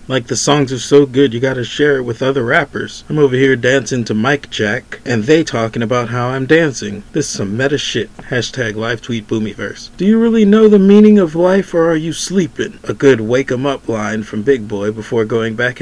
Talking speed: 220 wpm